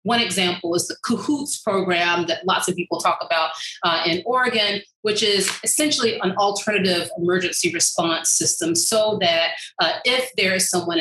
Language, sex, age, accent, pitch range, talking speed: English, female, 30-49, American, 170-215 Hz, 165 wpm